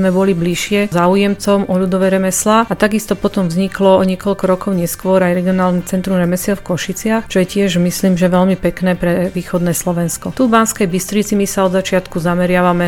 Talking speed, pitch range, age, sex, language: 180 wpm, 180-195 Hz, 40-59, female, Slovak